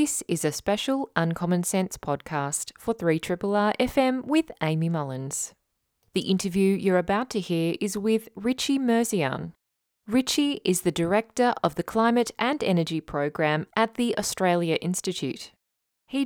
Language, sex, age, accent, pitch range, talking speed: English, female, 20-39, Australian, 165-220 Hz, 140 wpm